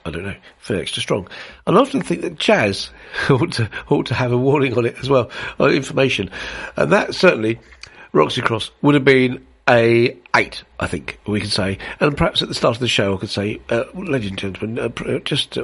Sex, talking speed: male, 210 wpm